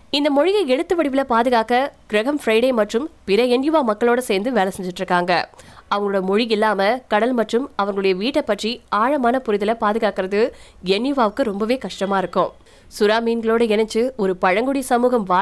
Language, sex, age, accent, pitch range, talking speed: Tamil, female, 20-39, native, 200-255 Hz, 40 wpm